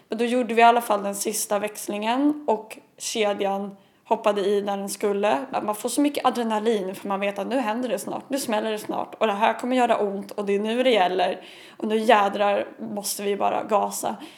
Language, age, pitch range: Swedish, 20-39, 205-245 Hz